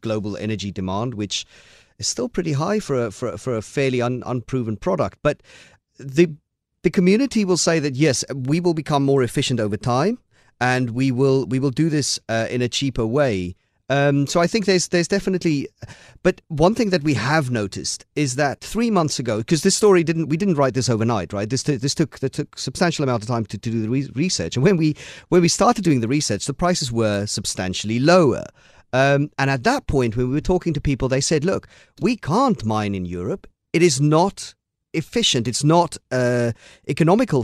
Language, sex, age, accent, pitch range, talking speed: English, male, 40-59, British, 115-155 Hz, 210 wpm